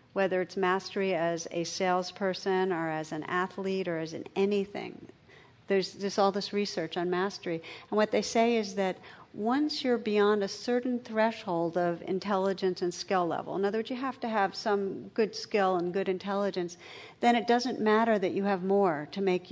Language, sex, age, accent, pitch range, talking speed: English, female, 50-69, American, 175-200 Hz, 190 wpm